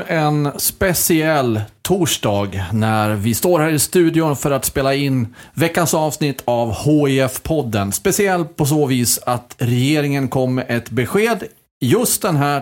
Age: 30-49